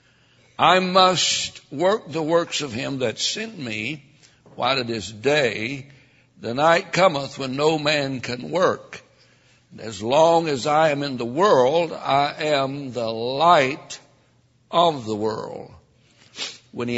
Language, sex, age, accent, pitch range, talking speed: English, male, 60-79, American, 120-155 Hz, 140 wpm